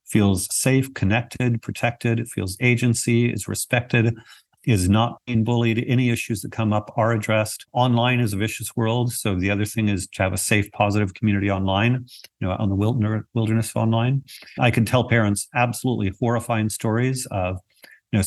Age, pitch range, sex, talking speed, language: 50-69, 105-120 Hz, male, 175 wpm, English